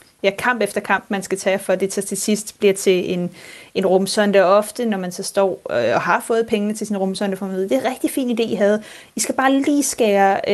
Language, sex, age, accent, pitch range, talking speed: Danish, female, 30-49, native, 195-225 Hz, 240 wpm